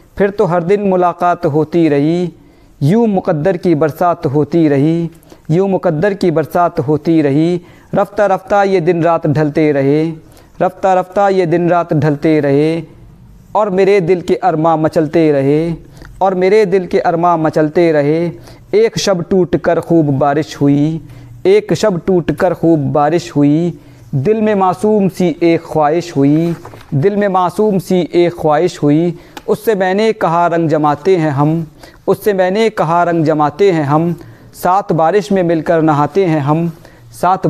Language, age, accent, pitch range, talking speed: Hindi, 50-69, native, 155-185 Hz, 150 wpm